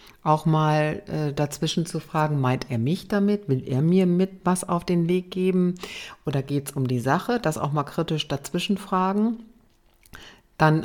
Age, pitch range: 50-69, 145-180 Hz